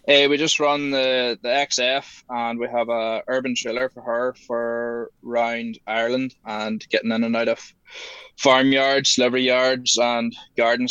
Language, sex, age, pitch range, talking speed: English, male, 20-39, 115-125 Hz, 160 wpm